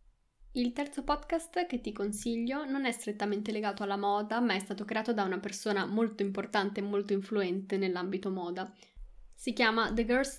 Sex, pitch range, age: female, 200-235 Hz, 10-29